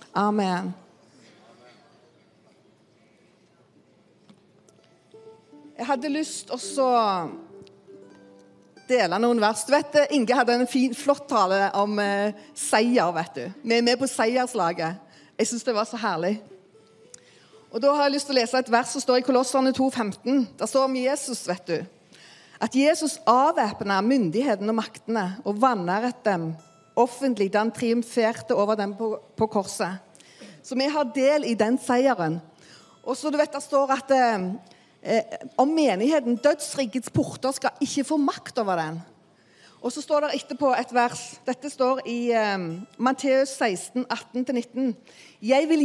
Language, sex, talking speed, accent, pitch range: English, female, 145 wpm, Swedish, 210-275 Hz